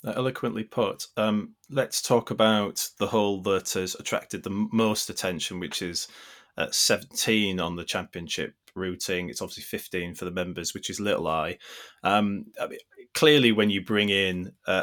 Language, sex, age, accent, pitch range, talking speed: English, male, 20-39, British, 90-110 Hz, 165 wpm